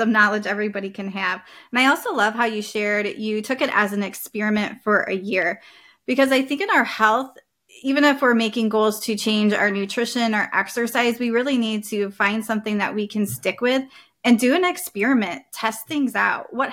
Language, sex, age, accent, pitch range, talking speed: English, female, 20-39, American, 205-240 Hz, 205 wpm